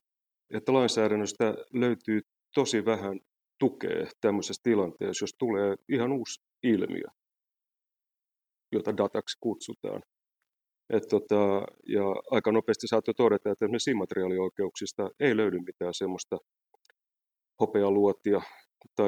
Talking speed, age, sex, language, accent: 100 wpm, 30-49, male, Finnish, native